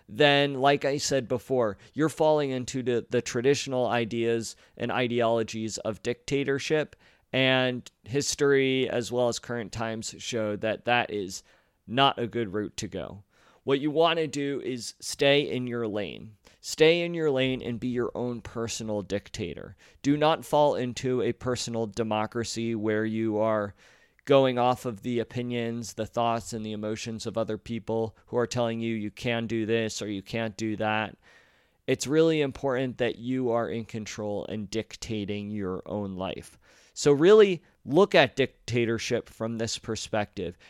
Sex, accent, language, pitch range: male, American, English, 110-135 Hz